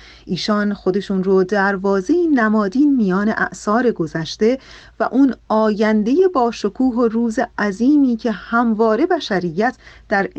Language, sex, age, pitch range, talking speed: Persian, female, 30-49, 185-250 Hz, 110 wpm